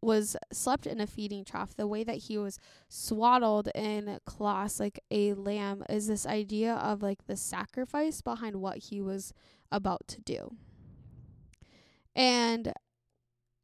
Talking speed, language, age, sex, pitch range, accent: 140 wpm, English, 10-29, female, 200-240 Hz, American